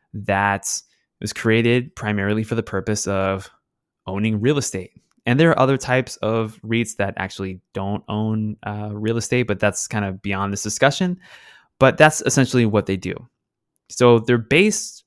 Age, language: 20-39, English